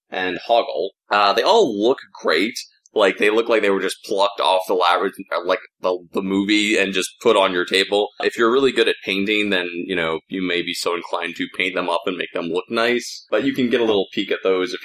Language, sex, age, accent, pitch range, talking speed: English, male, 20-39, American, 90-115 Hz, 245 wpm